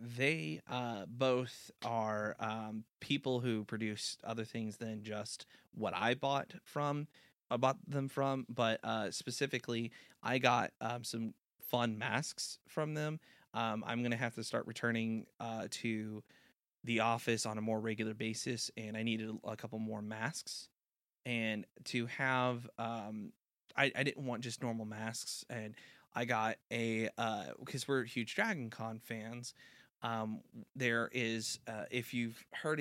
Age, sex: 20-39, male